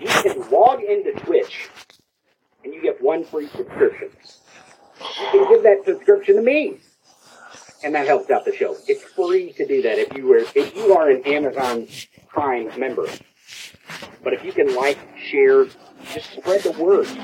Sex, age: male, 40-59